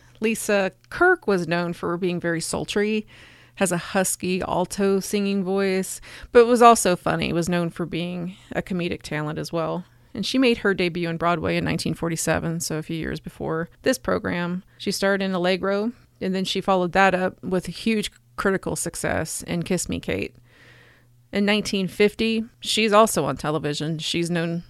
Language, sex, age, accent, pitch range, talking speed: English, female, 30-49, American, 160-195 Hz, 170 wpm